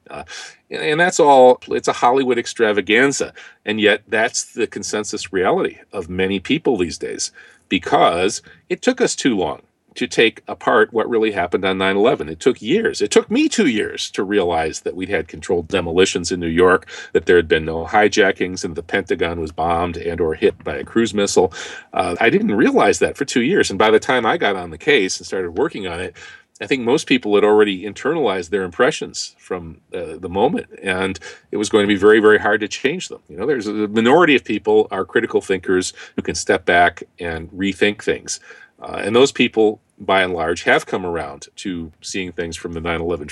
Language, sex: English, male